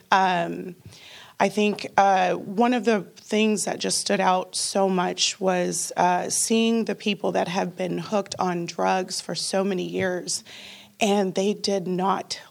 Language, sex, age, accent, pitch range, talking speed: English, female, 30-49, American, 180-205 Hz, 160 wpm